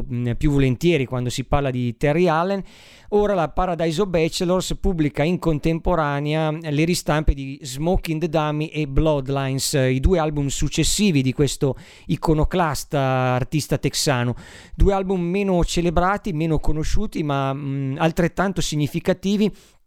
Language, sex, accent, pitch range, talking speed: Italian, male, native, 140-170 Hz, 130 wpm